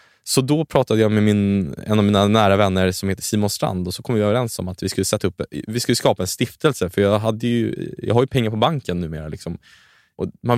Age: 20-39